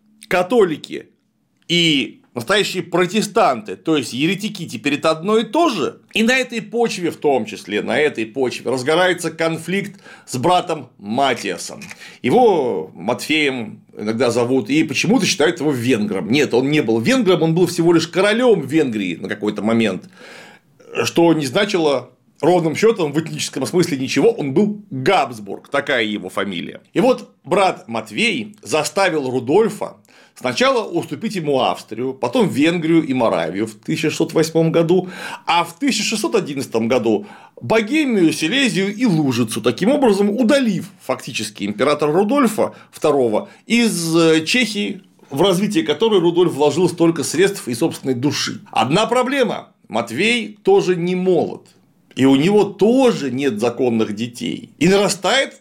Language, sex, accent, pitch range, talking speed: Russian, male, native, 145-215 Hz, 135 wpm